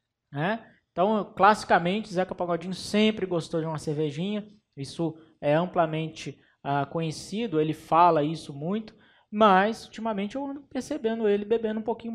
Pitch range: 150-205 Hz